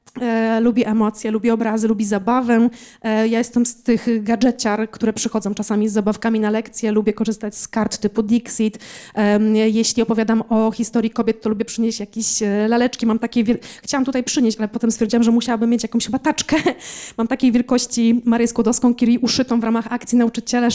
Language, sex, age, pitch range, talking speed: Polish, female, 20-39, 220-240 Hz, 180 wpm